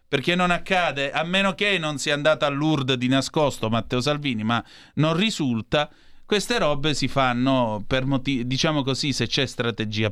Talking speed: 165 wpm